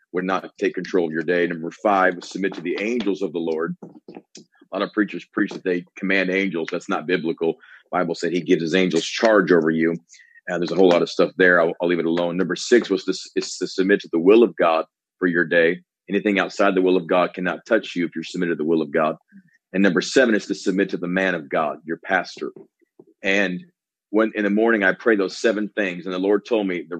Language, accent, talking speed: English, American, 245 wpm